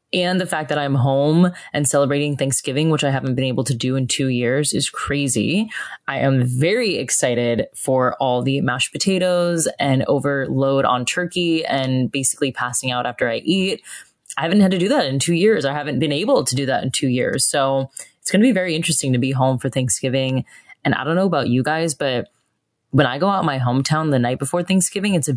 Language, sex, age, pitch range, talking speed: English, female, 20-39, 130-175 Hz, 220 wpm